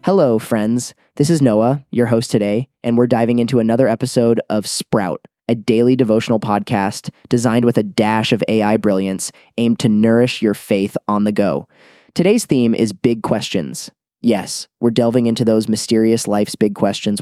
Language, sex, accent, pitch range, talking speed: English, male, American, 105-120 Hz, 170 wpm